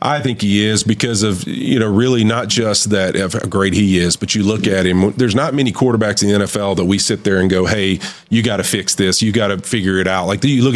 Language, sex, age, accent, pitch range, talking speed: English, male, 40-59, American, 105-130 Hz, 280 wpm